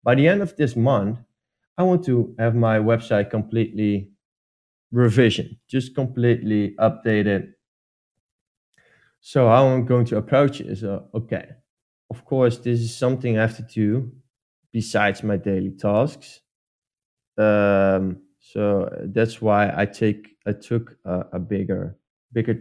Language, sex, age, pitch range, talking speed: English, male, 20-39, 105-125 Hz, 140 wpm